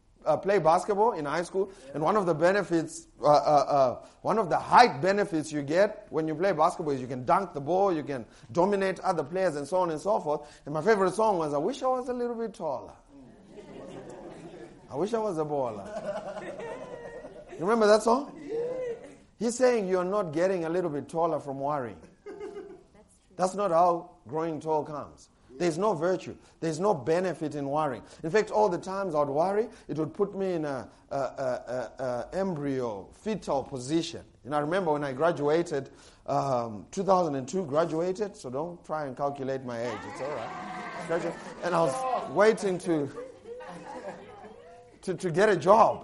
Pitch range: 155-210 Hz